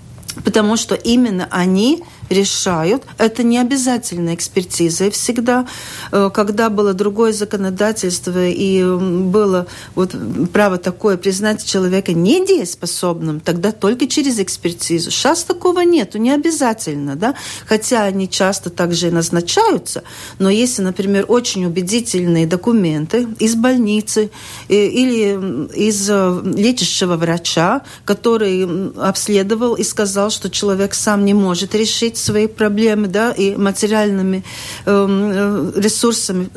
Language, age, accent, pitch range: Russian, 40-59, native, 185-230 Hz